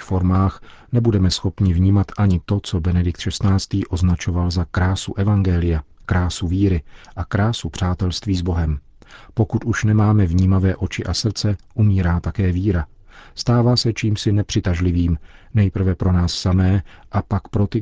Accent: native